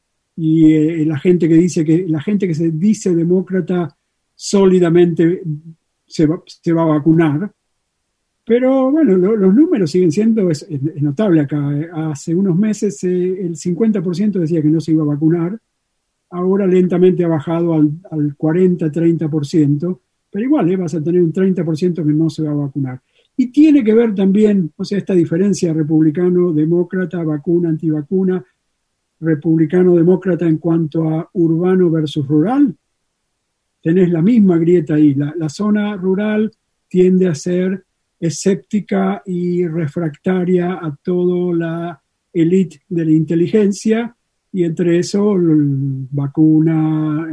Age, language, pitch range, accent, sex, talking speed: 50-69, Spanish, 160-185 Hz, Argentinian, male, 135 wpm